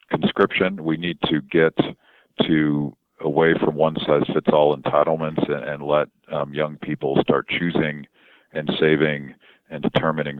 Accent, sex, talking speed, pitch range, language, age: American, male, 145 wpm, 75-85 Hz, English, 50-69